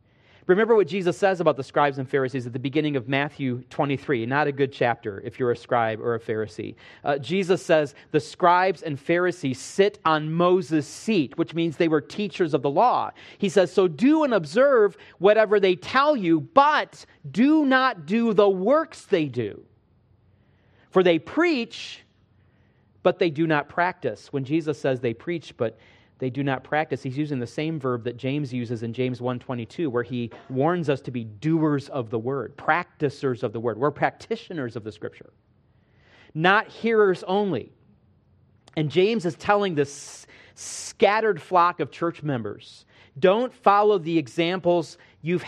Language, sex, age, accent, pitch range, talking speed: English, male, 40-59, American, 130-185 Hz, 170 wpm